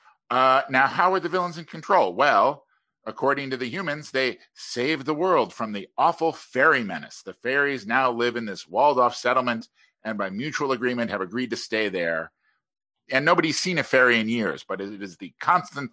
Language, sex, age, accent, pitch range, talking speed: English, male, 50-69, American, 110-145 Hz, 190 wpm